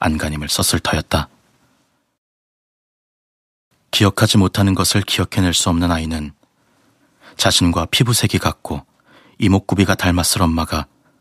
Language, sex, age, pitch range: Korean, male, 30-49, 85-105 Hz